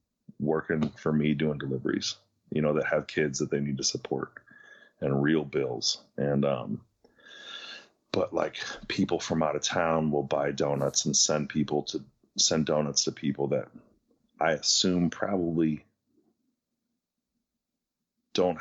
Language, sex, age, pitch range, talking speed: English, male, 30-49, 70-85 Hz, 140 wpm